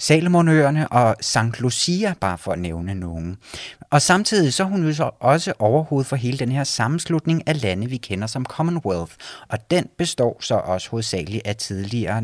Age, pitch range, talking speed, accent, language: 30-49, 105-155 Hz, 165 wpm, native, Danish